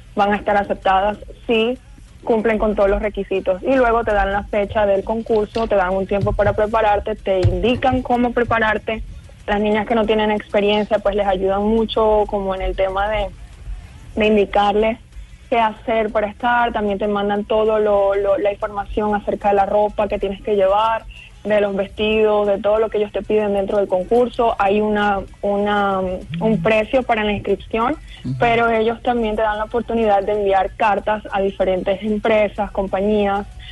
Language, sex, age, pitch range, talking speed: Spanish, female, 20-39, 200-225 Hz, 180 wpm